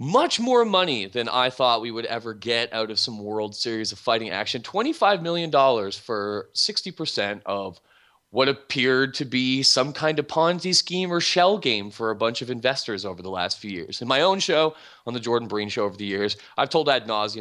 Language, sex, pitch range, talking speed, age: English, male, 105-170 Hz, 210 wpm, 30-49